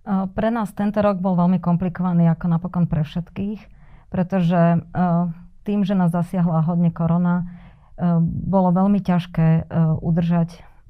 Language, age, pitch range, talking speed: Slovak, 30-49, 165-180 Hz, 120 wpm